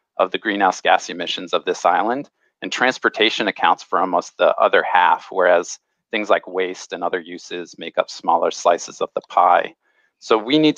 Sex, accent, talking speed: male, American, 185 wpm